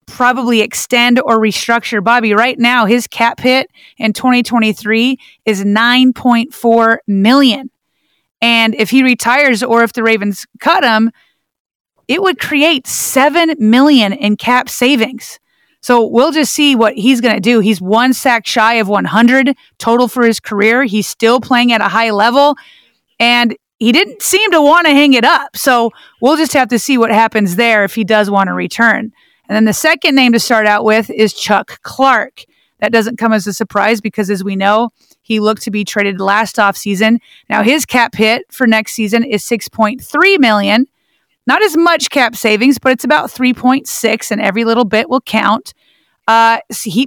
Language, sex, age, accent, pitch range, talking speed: English, female, 30-49, American, 220-265 Hz, 180 wpm